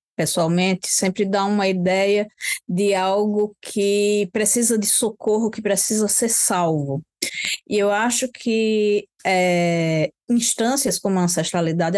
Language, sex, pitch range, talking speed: Portuguese, female, 185-240 Hz, 115 wpm